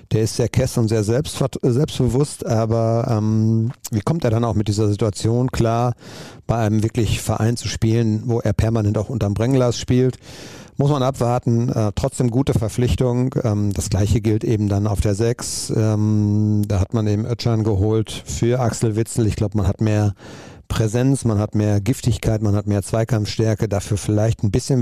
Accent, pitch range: German, 105-120 Hz